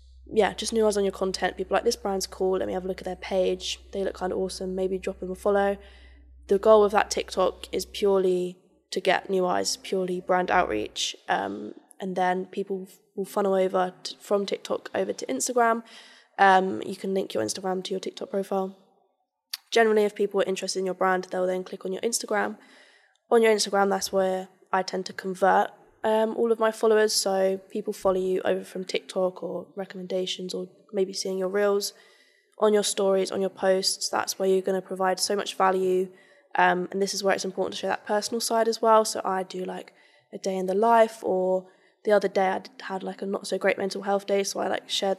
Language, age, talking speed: English, 10-29, 220 wpm